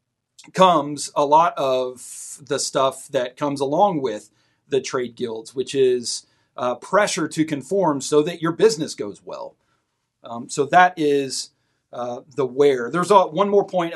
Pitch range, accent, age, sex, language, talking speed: 135-175 Hz, American, 40-59, male, English, 155 wpm